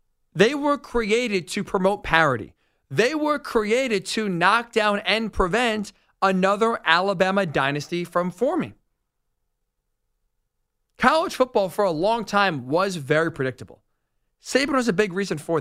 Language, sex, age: English, male, 40-59